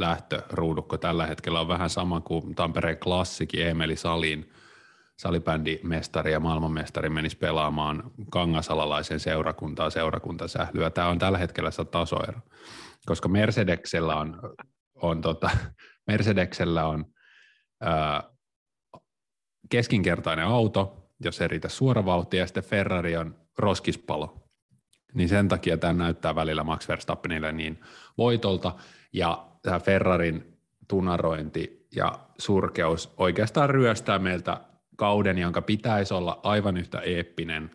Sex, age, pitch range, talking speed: male, 30-49, 80-95 Hz, 110 wpm